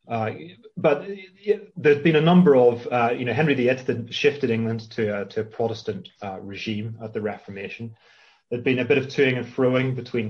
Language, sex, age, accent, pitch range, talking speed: English, male, 30-49, British, 110-140 Hz, 205 wpm